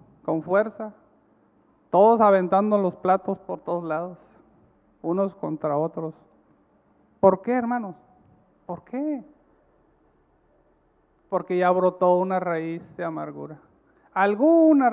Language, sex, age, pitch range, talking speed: Spanish, male, 50-69, 165-215 Hz, 100 wpm